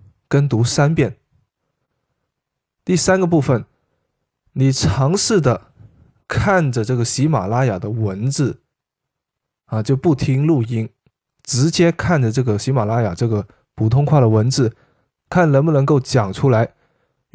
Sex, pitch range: male, 115-145 Hz